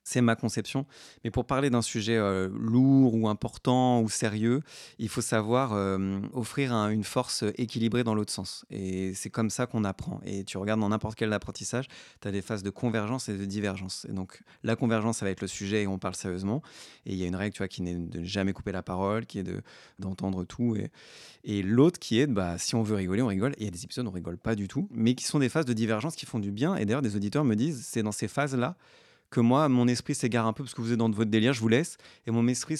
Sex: male